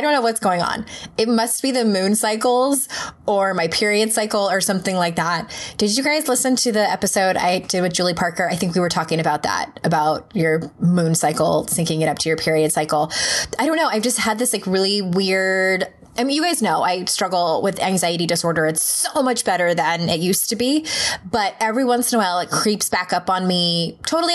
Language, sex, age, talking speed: English, female, 20-39, 225 wpm